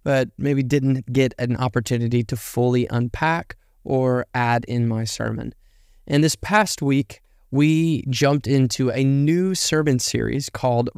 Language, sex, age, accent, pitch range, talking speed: English, male, 20-39, American, 125-150 Hz, 140 wpm